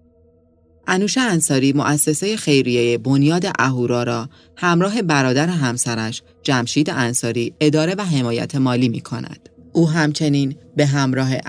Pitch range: 120-155 Hz